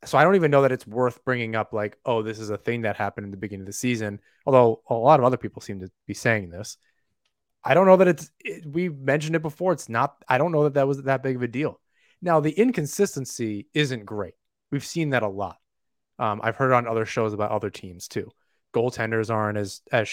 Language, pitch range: English, 105-135 Hz